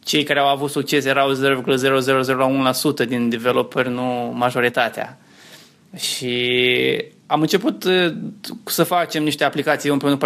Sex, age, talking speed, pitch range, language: male, 20-39, 110 wpm, 135-165 Hz, Romanian